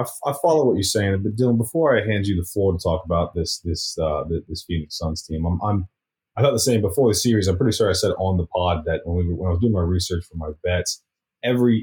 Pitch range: 90-110 Hz